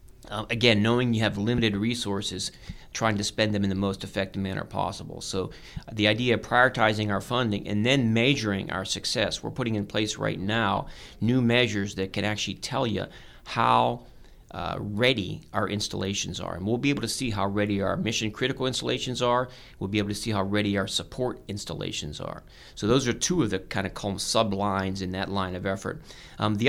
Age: 40-59